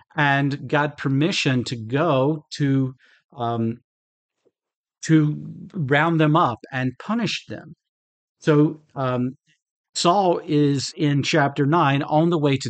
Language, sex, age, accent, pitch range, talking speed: English, male, 50-69, American, 130-160 Hz, 120 wpm